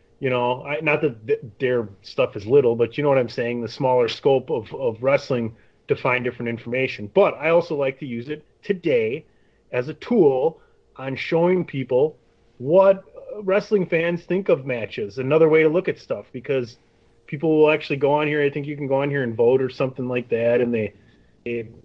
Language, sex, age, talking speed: English, male, 30-49, 205 wpm